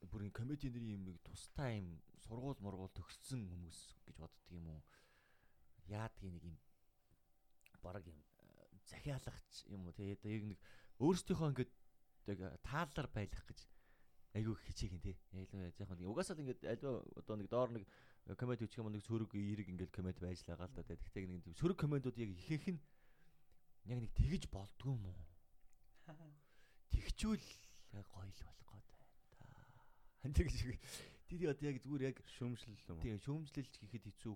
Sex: male